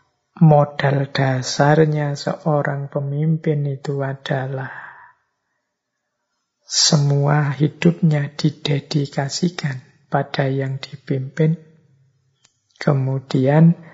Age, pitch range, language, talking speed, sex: 50-69, 135-160 Hz, Indonesian, 55 wpm, male